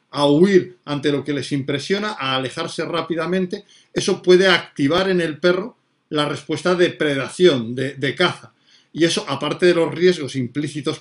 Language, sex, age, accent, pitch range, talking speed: Spanish, male, 50-69, Spanish, 145-180 Hz, 165 wpm